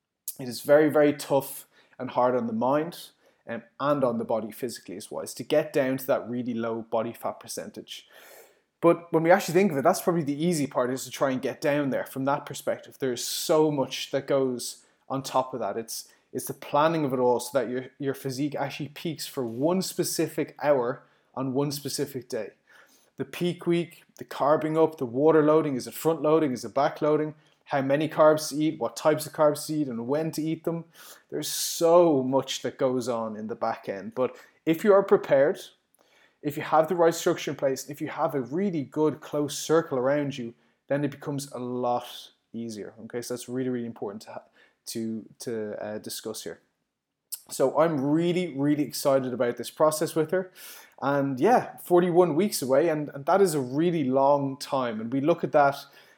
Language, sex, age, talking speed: English, male, 20-39, 205 wpm